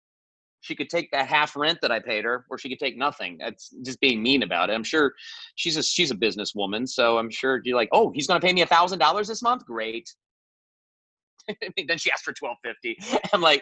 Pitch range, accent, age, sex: 110-150 Hz, American, 30-49, male